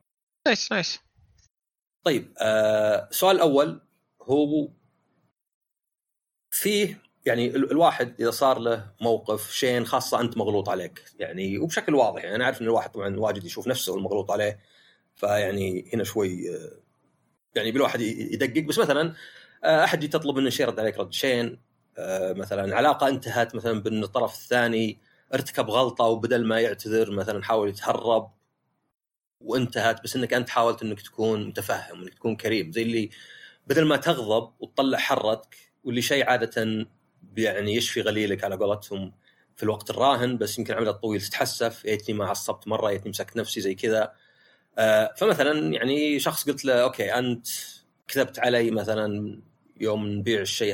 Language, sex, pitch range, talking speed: Arabic, male, 105-130 Hz, 140 wpm